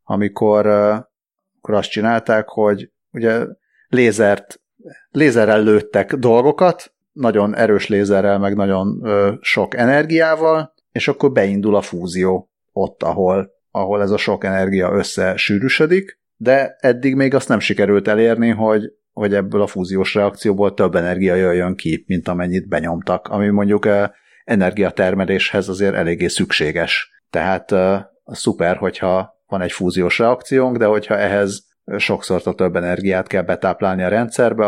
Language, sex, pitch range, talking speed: Hungarian, male, 95-110 Hz, 130 wpm